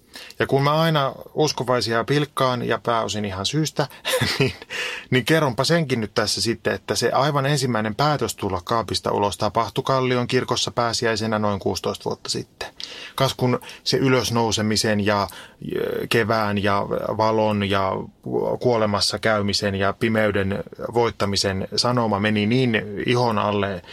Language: Finnish